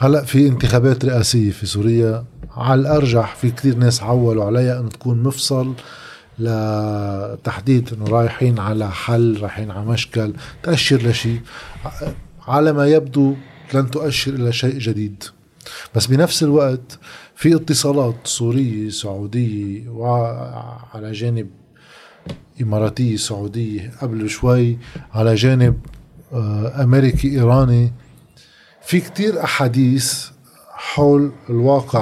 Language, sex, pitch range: Arabic, male, 110-140 Hz